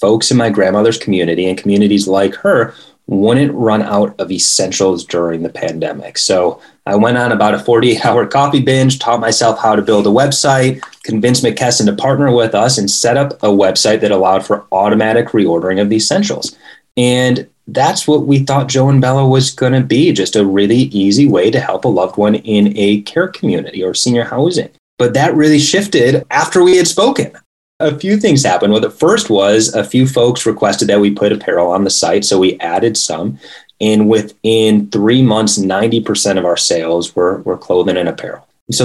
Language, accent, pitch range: English, American, 100-130 Hz